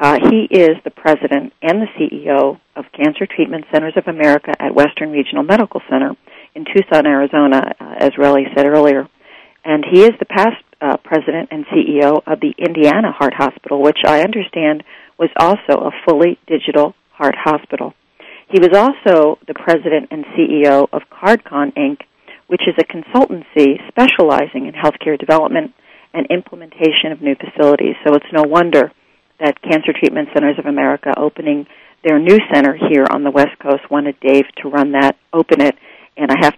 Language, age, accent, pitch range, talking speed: English, 40-59, American, 145-175 Hz, 170 wpm